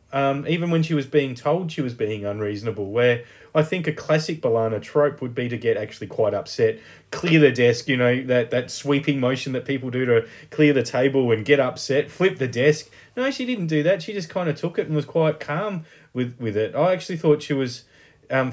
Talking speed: 230 wpm